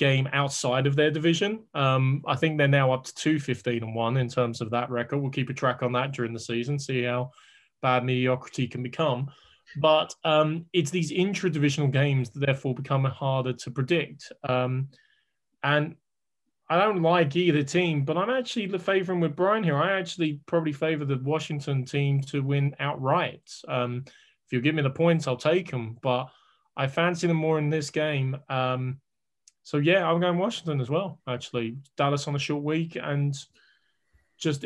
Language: English